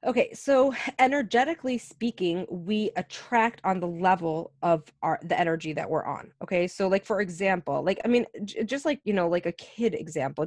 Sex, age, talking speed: female, 20-39, 190 wpm